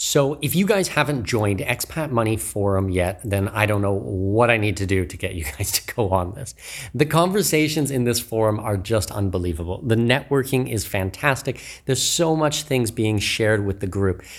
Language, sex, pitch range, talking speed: English, male, 100-145 Hz, 200 wpm